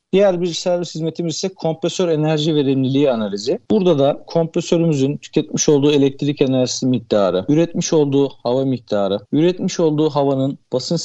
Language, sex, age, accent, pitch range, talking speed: Turkish, male, 50-69, native, 135-170 Hz, 135 wpm